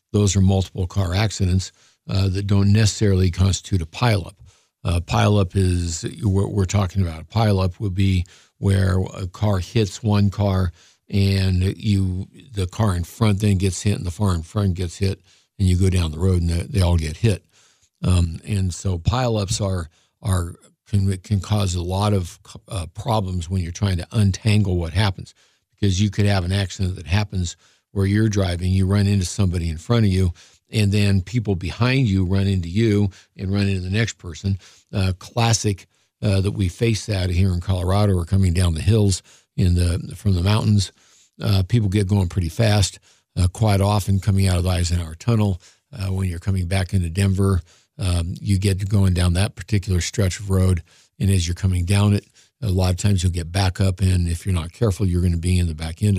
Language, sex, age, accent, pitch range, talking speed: English, male, 60-79, American, 90-105 Hz, 200 wpm